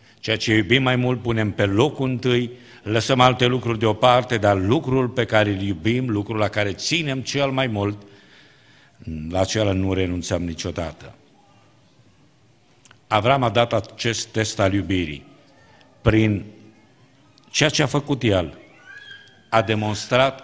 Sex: male